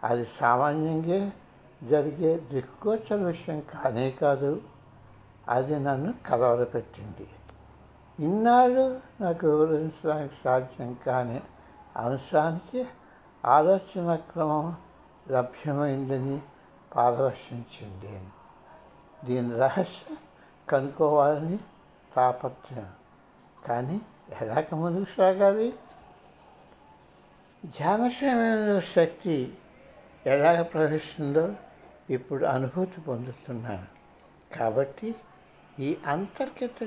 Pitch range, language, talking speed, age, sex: 130-175 Hz, Telugu, 65 wpm, 60-79, male